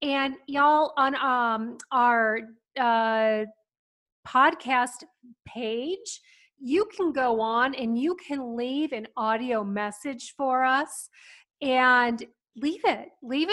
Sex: female